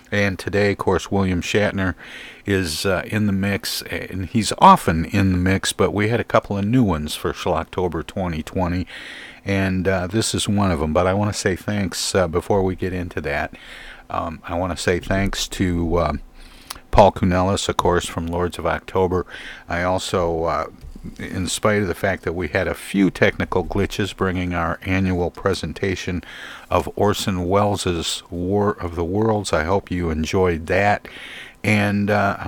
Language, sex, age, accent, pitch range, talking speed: English, male, 50-69, American, 85-100 Hz, 175 wpm